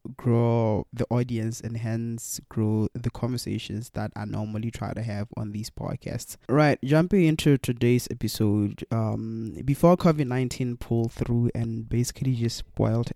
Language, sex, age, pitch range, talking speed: English, male, 20-39, 115-140 Hz, 145 wpm